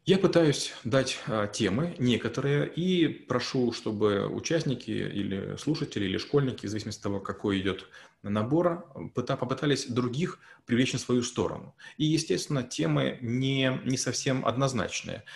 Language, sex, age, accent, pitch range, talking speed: Russian, male, 30-49, native, 105-130 Hz, 130 wpm